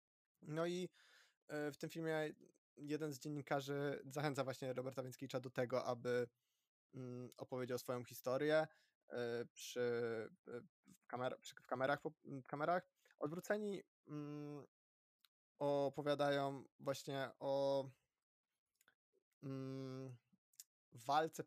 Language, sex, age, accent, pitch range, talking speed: Polish, male, 20-39, native, 130-155 Hz, 80 wpm